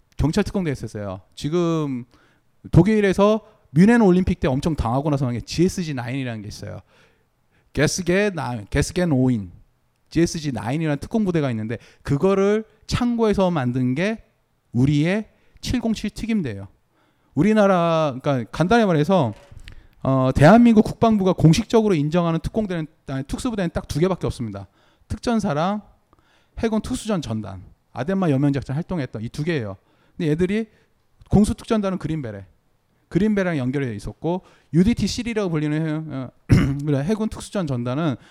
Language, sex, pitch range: Korean, male, 125-200 Hz